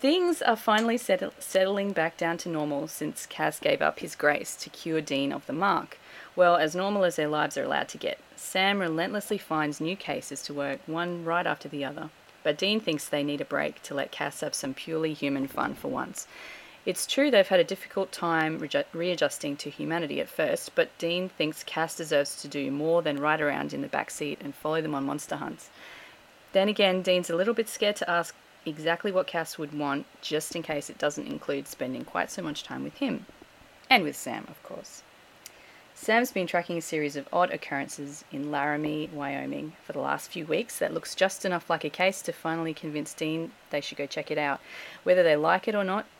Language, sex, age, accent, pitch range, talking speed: English, female, 30-49, Australian, 150-185 Hz, 210 wpm